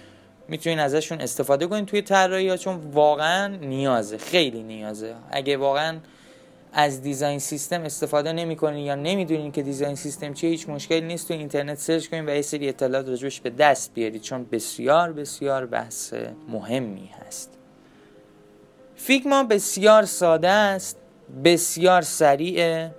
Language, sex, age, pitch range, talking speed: Persian, male, 20-39, 140-180 Hz, 140 wpm